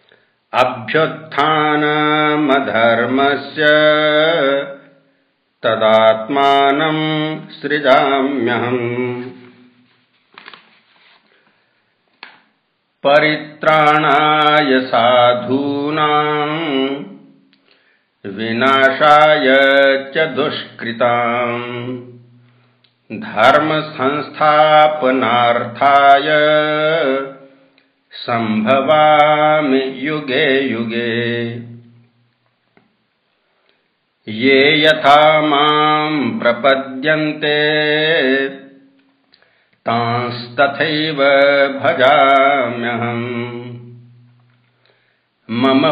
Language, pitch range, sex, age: Hindi, 120-150 Hz, male, 60-79